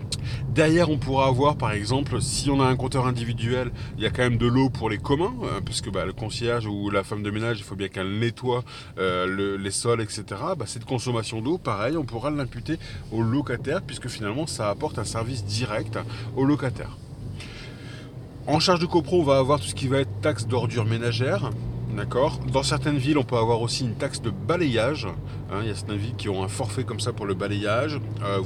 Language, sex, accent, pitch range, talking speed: French, male, French, 110-130 Hz, 215 wpm